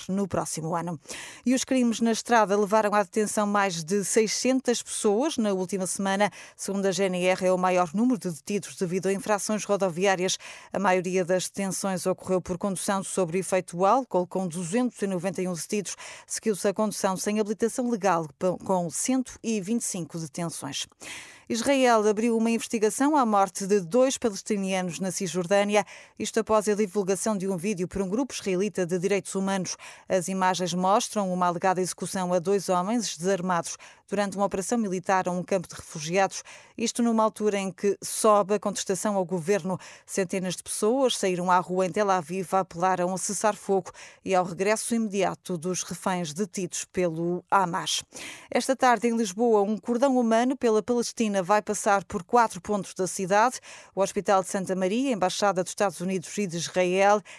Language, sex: Portuguese, female